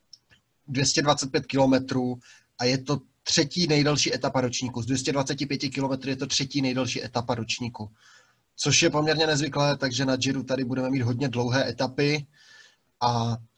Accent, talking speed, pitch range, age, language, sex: native, 140 wpm, 125-145 Hz, 20-39, Czech, male